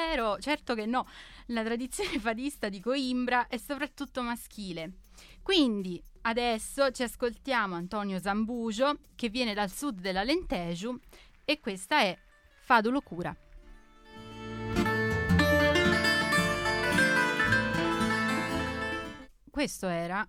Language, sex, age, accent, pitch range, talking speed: Italian, female, 30-49, native, 180-260 Hz, 90 wpm